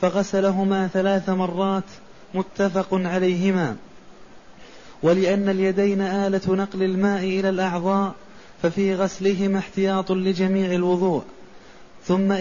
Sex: male